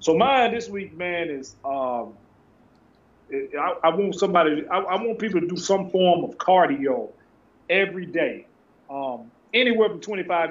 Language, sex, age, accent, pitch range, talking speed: English, male, 30-49, American, 145-210 Hz, 150 wpm